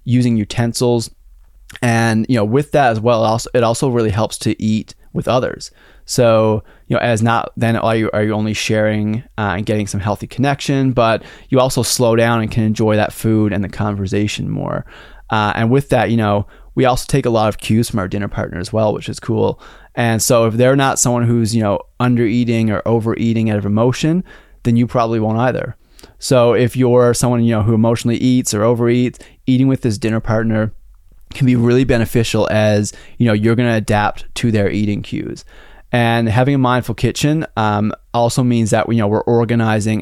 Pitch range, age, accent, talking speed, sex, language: 105-120 Hz, 20-39, American, 205 wpm, male, English